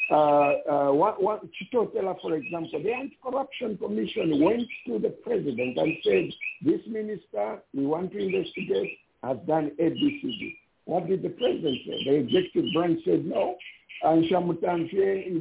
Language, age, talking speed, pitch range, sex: English, 60-79, 130 wpm, 165-275 Hz, male